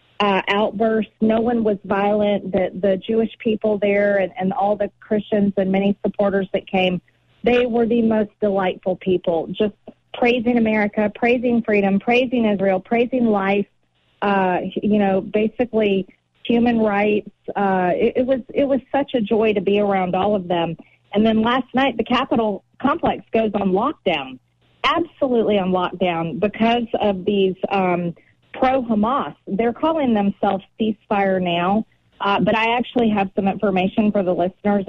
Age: 40-59